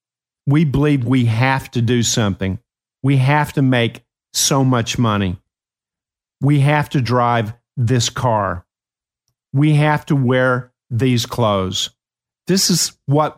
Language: English